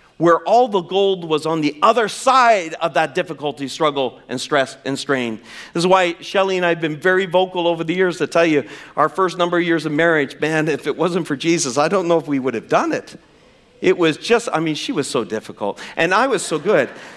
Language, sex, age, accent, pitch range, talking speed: English, male, 50-69, American, 130-185 Hz, 240 wpm